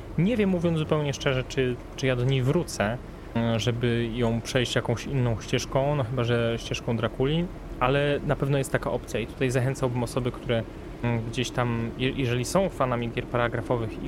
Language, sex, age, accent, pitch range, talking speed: Polish, male, 20-39, native, 120-135 Hz, 170 wpm